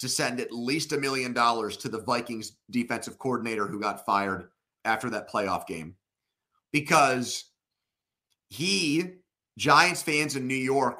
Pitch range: 110-140 Hz